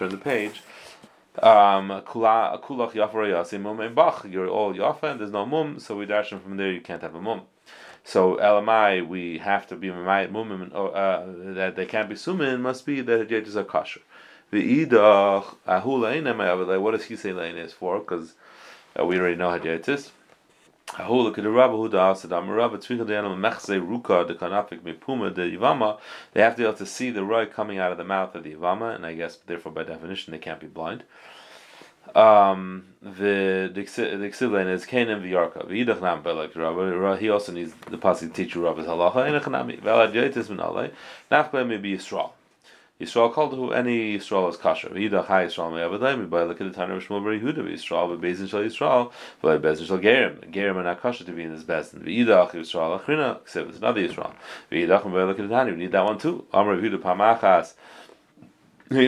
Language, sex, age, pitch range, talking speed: English, male, 30-49, 90-115 Hz, 180 wpm